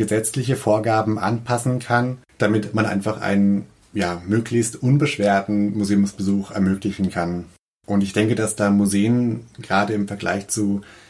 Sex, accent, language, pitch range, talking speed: male, German, German, 100-110 Hz, 130 wpm